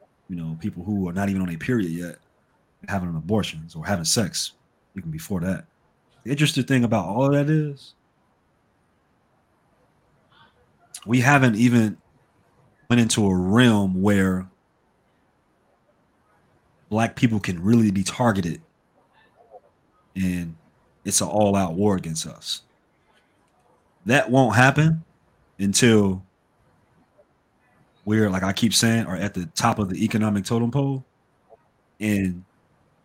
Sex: male